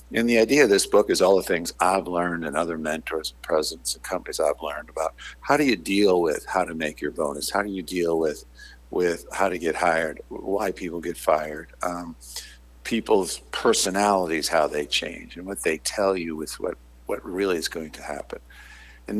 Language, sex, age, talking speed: English, male, 60-79, 205 wpm